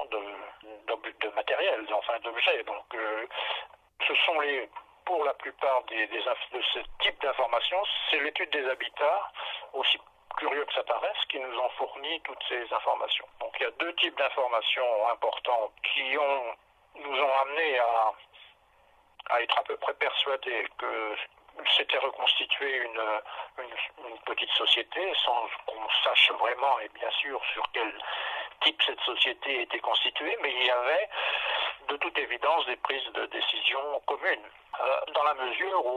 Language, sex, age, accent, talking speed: French, male, 60-79, French, 160 wpm